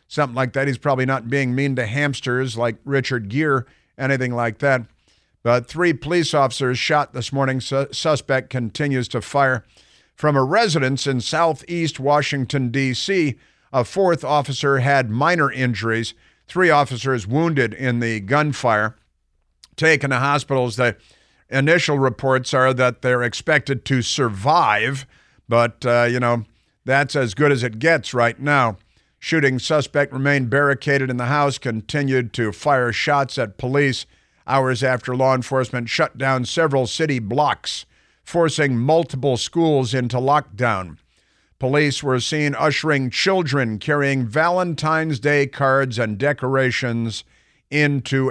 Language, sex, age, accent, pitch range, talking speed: English, male, 50-69, American, 120-145 Hz, 135 wpm